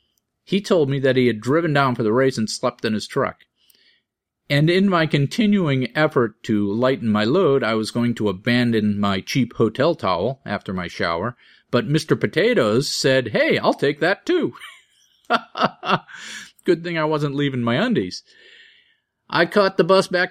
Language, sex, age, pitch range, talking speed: English, male, 40-59, 110-155 Hz, 170 wpm